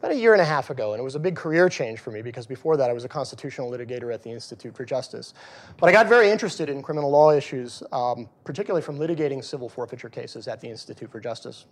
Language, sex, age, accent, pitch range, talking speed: English, male, 30-49, American, 125-165 Hz, 255 wpm